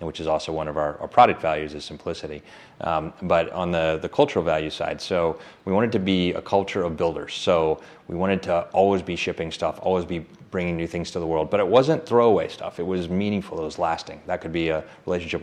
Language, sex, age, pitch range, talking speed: English, male, 30-49, 80-95 Hz, 235 wpm